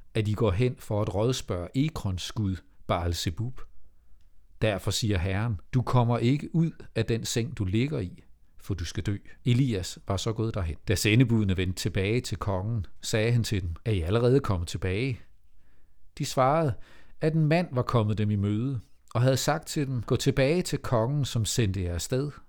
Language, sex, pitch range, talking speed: Danish, male, 90-125 Hz, 185 wpm